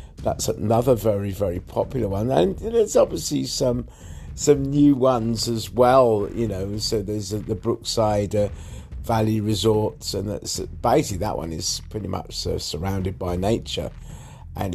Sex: male